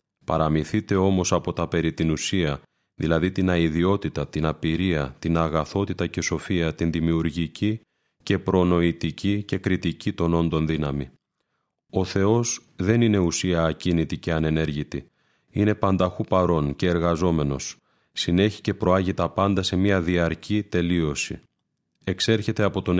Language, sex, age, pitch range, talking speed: Greek, male, 30-49, 85-100 Hz, 130 wpm